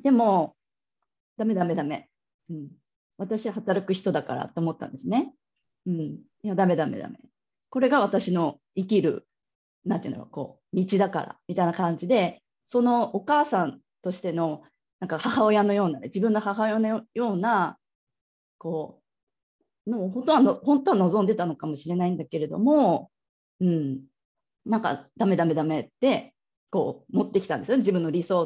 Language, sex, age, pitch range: Japanese, female, 20-39, 170-225 Hz